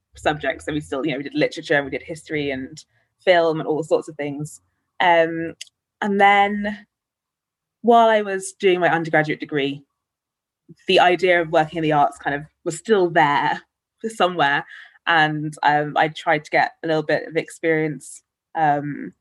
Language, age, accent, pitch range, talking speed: English, 20-39, British, 150-190 Hz, 170 wpm